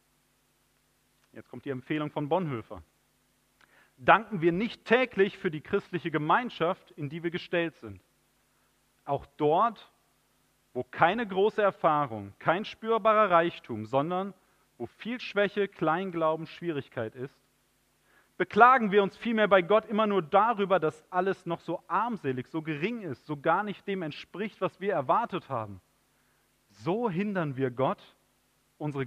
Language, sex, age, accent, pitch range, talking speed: German, male, 40-59, German, 145-200 Hz, 135 wpm